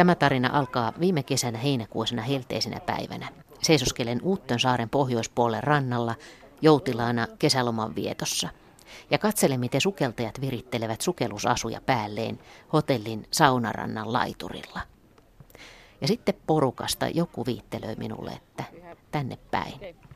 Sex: female